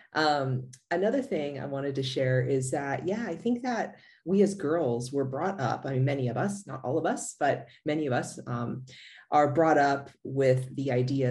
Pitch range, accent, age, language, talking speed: 125-155 Hz, American, 30-49, English, 205 wpm